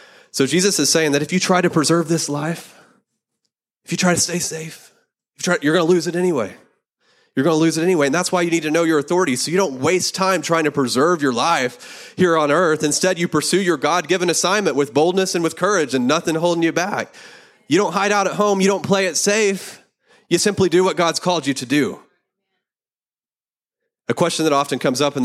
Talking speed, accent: 225 wpm, American